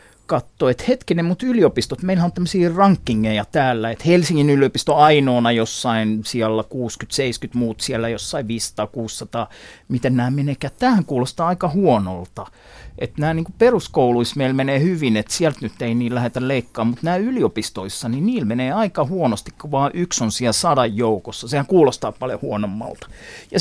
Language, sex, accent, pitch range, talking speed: Finnish, male, native, 115-165 Hz, 155 wpm